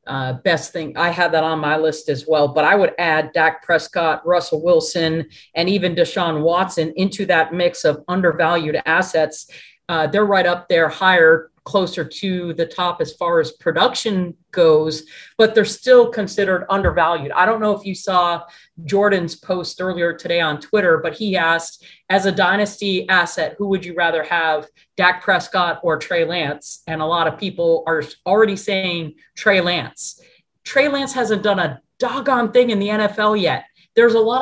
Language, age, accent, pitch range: English, 40-59, American, 170-210 Hz